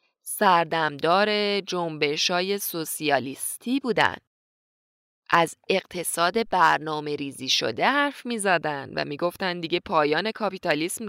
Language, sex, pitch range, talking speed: Persian, female, 165-215 Hz, 85 wpm